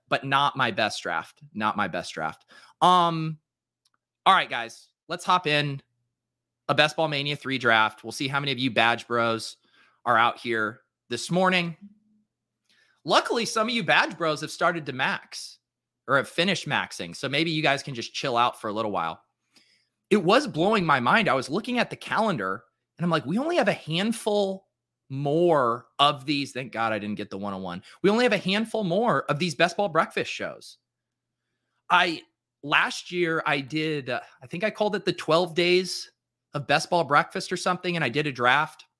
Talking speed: 195 wpm